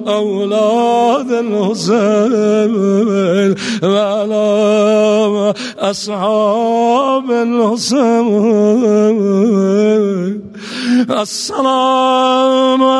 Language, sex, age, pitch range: Persian, male, 50-69, 210-240 Hz